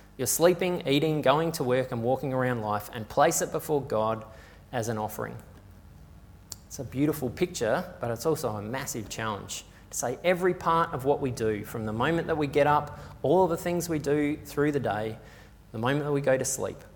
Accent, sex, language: Australian, male, English